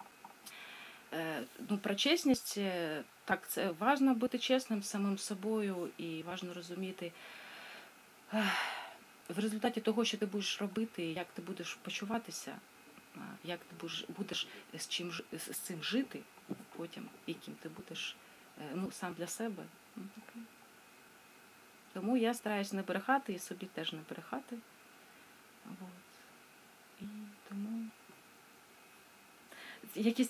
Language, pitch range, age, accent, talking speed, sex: Ukrainian, 180-225 Hz, 30-49, native, 105 wpm, female